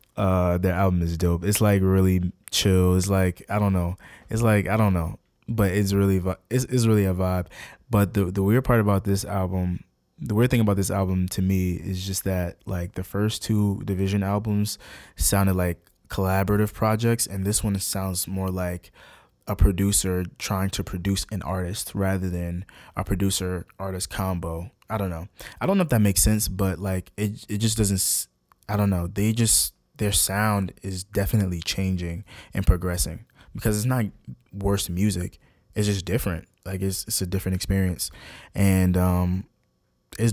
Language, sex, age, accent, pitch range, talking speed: English, male, 20-39, American, 90-100 Hz, 180 wpm